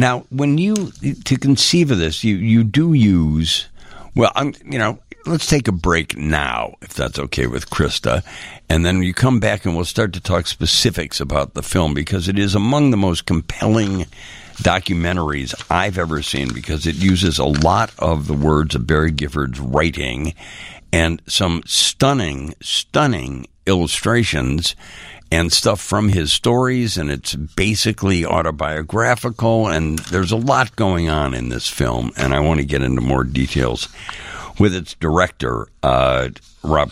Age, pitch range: 60-79, 70-95 Hz